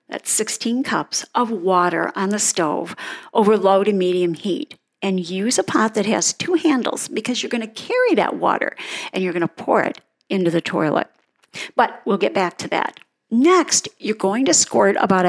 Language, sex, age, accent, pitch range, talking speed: English, female, 50-69, American, 190-255 Hz, 190 wpm